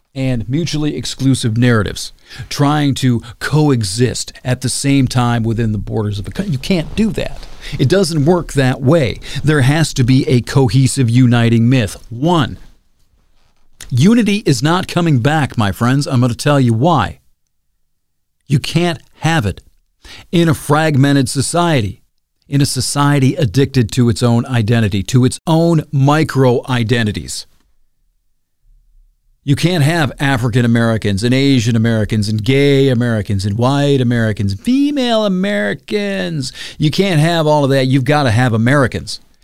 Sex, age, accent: male, 50-69, American